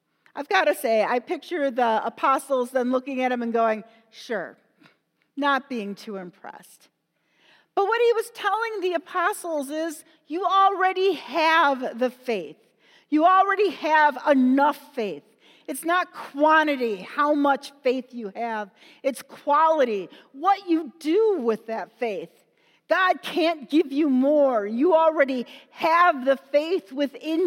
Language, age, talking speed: English, 50-69, 140 wpm